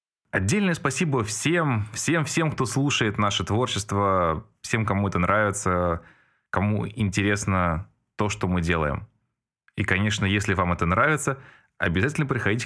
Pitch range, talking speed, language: 95-125 Hz, 130 wpm, Russian